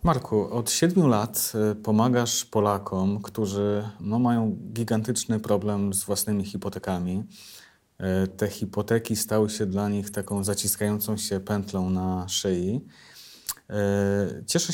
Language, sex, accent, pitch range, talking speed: Polish, male, native, 100-120 Hz, 105 wpm